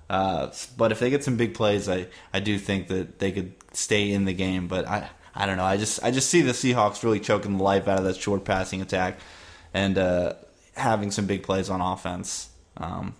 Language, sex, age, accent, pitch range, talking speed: English, male, 20-39, American, 95-115 Hz, 225 wpm